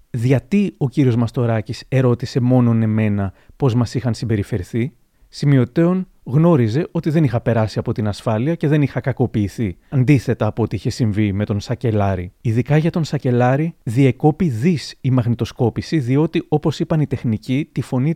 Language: Greek